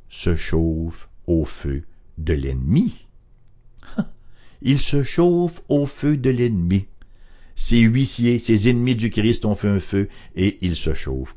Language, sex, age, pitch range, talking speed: English, male, 60-79, 90-120 Hz, 145 wpm